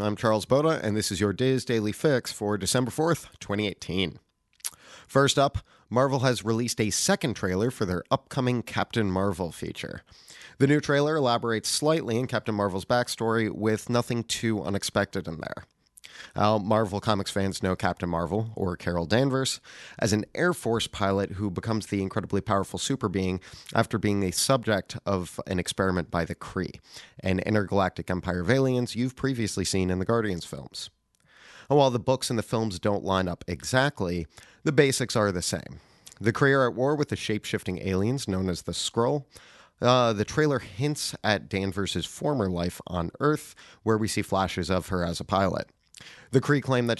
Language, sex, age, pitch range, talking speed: English, male, 30-49, 95-120 Hz, 175 wpm